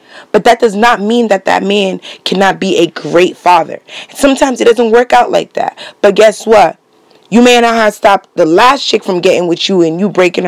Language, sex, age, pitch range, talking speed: English, female, 20-39, 185-245 Hz, 220 wpm